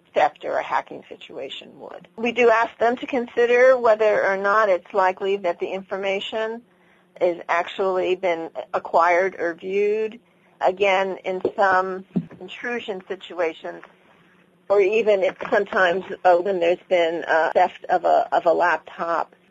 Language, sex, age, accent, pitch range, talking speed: English, female, 50-69, American, 165-200 Hz, 140 wpm